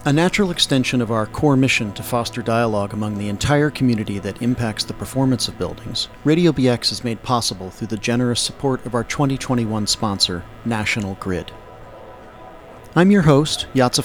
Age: 40-59